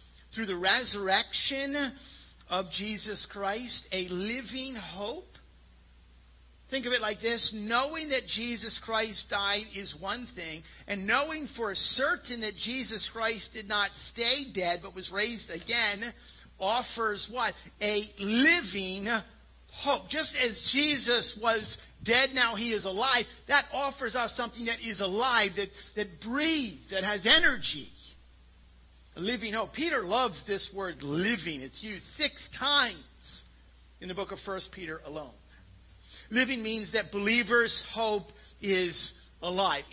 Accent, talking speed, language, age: American, 135 wpm, English, 50-69